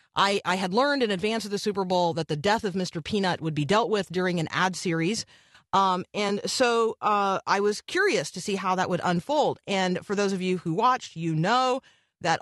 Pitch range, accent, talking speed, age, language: 160-205 Hz, American, 225 wpm, 40-59, English